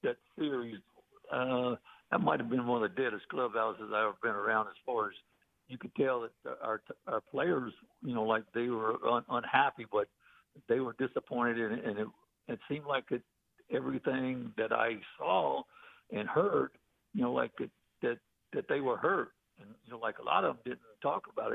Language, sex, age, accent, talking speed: English, male, 60-79, American, 200 wpm